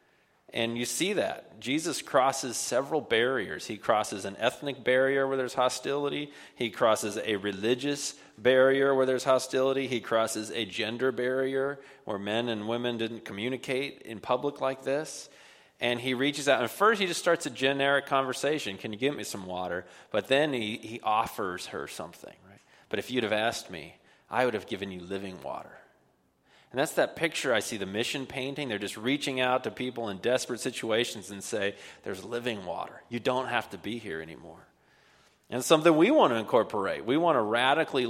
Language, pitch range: English, 110-135 Hz